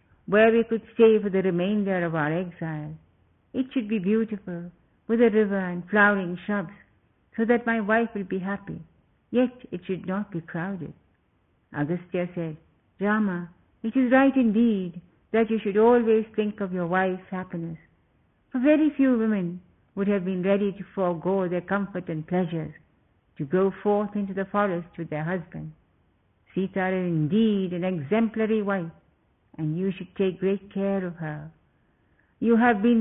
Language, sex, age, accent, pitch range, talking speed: English, female, 60-79, Indian, 170-215 Hz, 160 wpm